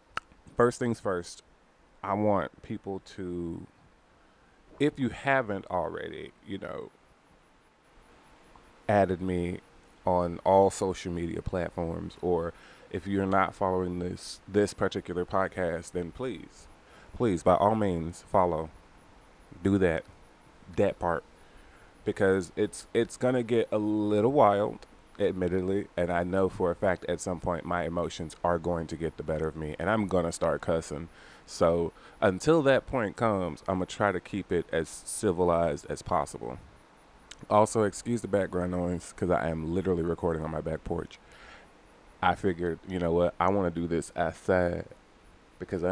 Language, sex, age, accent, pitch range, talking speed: English, male, 20-39, American, 85-100 Hz, 150 wpm